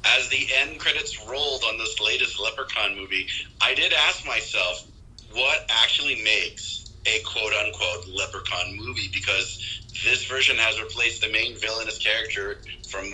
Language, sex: English, male